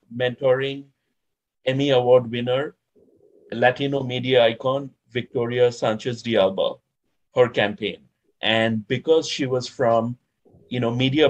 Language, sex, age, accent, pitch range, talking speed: English, male, 50-69, Indian, 120-140 Hz, 105 wpm